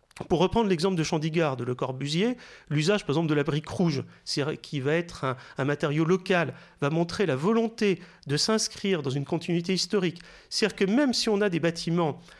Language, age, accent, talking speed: French, 40-59, French, 195 wpm